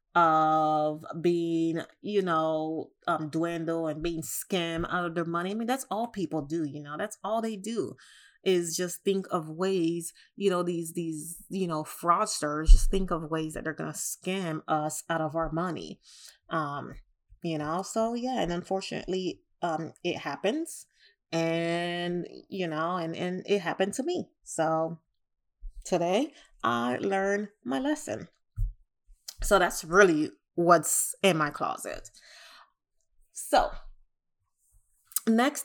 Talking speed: 145 wpm